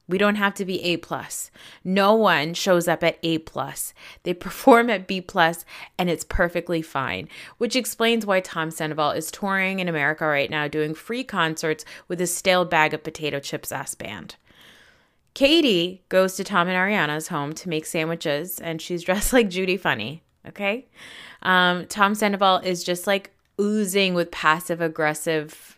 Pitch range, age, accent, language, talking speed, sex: 160-200 Hz, 20-39, American, English, 160 wpm, female